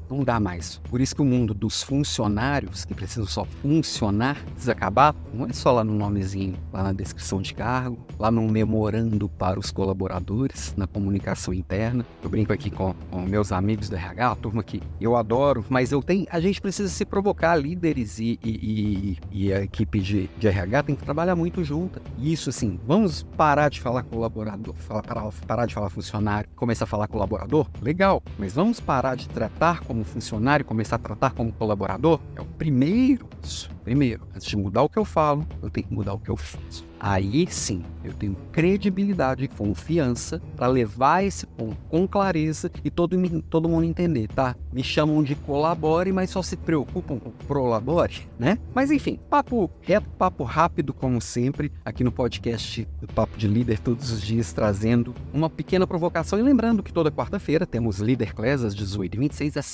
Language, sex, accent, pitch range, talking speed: Portuguese, male, Brazilian, 105-155 Hz, 185 wpm